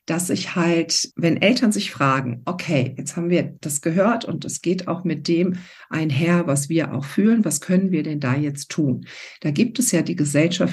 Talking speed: 205 wpm